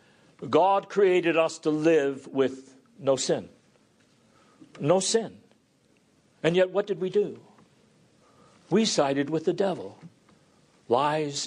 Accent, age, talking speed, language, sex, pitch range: American, 60-79, 115 wpm, English, male, 135-205 Hz